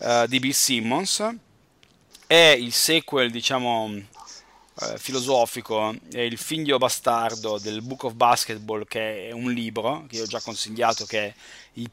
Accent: native